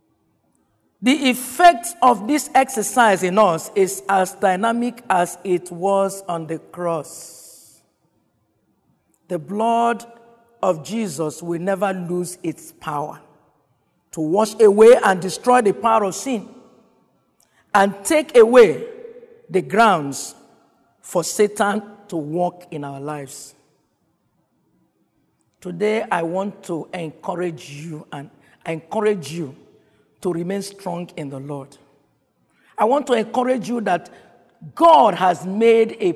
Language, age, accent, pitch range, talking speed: English, 50-69, Nigerian, 170-235 Hz, 120 wpm